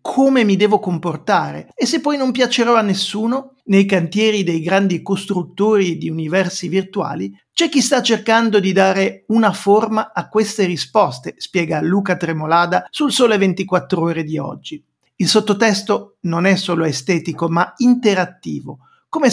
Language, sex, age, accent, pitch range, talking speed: Italian, male, 50-69, native, 170-225 Hz, 150 wpm